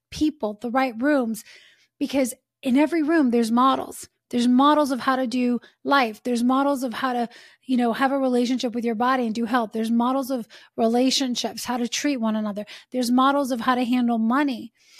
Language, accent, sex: English, American, female